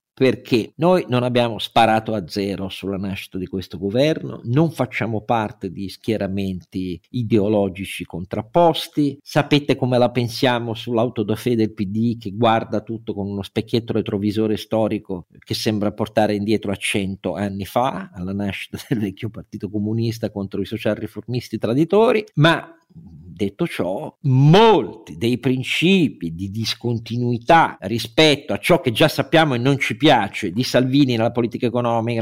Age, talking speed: 50-69, 140 wpm